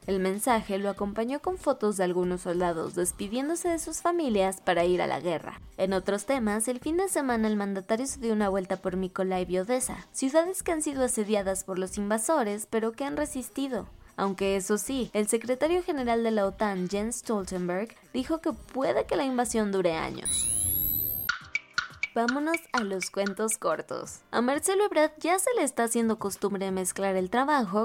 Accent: Mexican